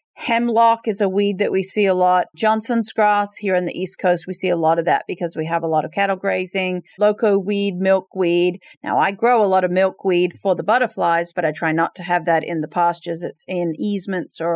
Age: 40-59